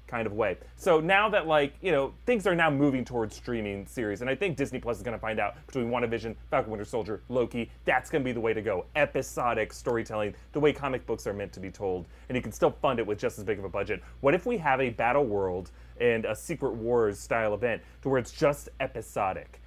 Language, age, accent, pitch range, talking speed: English, 30-49, American, 115-155 Hz, 250 wpm